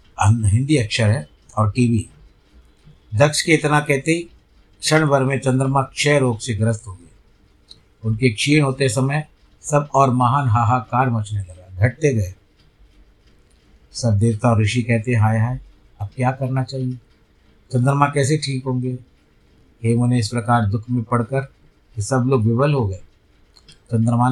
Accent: native